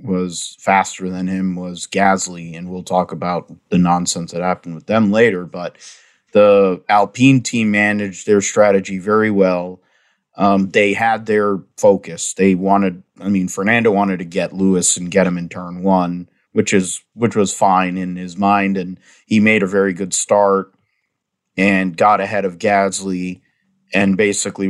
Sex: male